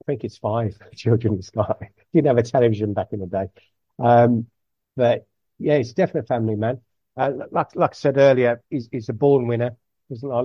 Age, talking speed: 50-69, 210 wpm